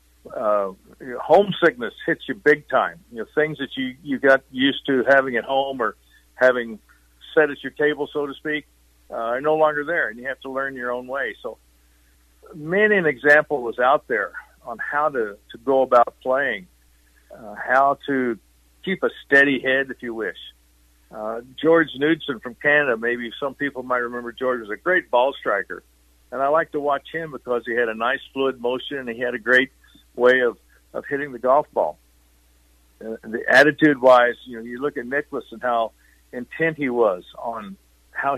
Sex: male